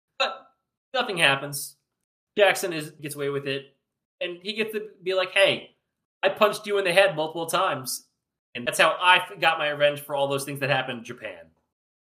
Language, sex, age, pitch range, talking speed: English, male, 20-39, 130-170 Hz, 195 wpm